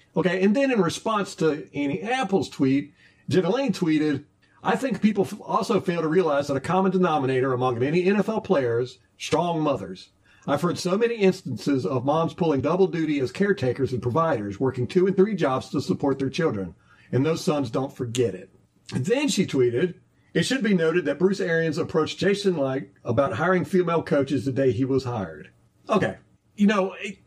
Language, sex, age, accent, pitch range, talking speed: English, male, 50-69, American, 130-190 Hz, 185 wpm